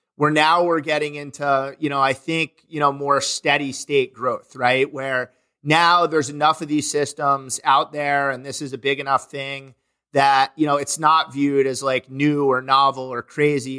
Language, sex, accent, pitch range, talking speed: English, male, American, 135-145 Hz, 195 wpm